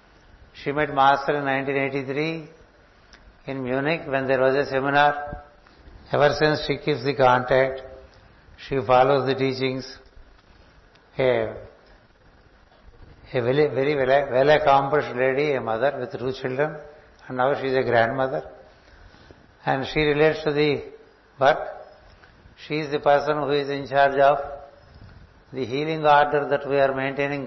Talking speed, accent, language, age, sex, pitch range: 140 wpm, native, Telugu, 60-79, male, 130-145 Hz